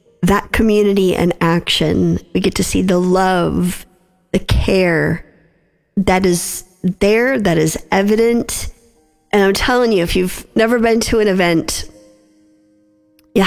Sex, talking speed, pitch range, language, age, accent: female, 135 wpm, 165-200 Hz, English, 40-59, American